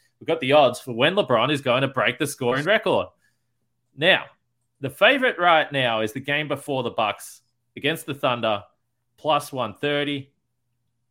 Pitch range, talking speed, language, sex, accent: 115-140 Hz, 160 wpm, English, male, Australian